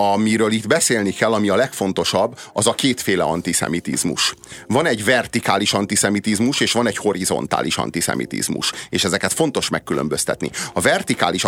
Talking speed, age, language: 135 wpm, 30-49, Hungarian